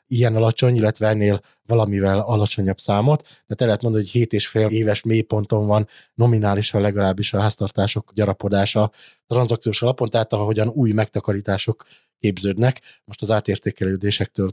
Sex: male